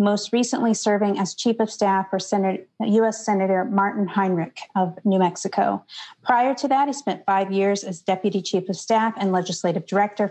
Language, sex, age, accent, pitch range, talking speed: English, female, 40-59, American, 190-230 Hz, 175 wpm